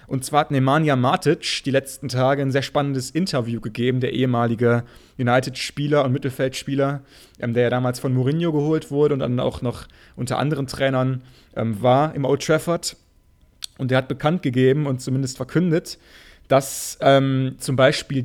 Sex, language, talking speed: male, German, 165 wpm